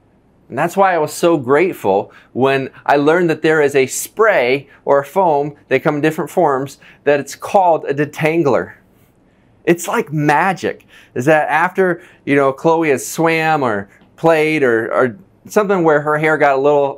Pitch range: 140-175 Hz